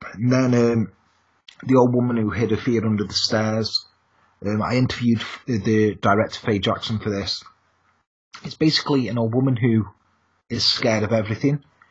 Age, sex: 30-49, male